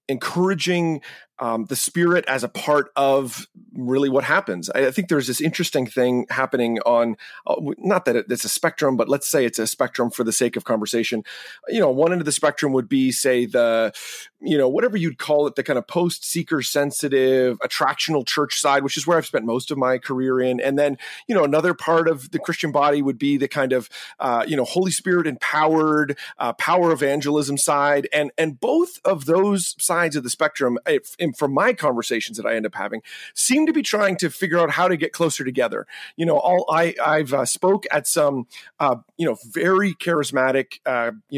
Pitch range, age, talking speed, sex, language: 135-175 Hz, 30-49, 205 wpm, male, English